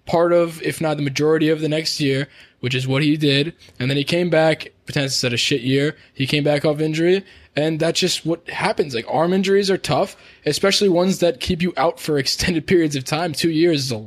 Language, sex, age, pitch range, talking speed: English, male, 20-39, 135-165 Hz, 240 wpm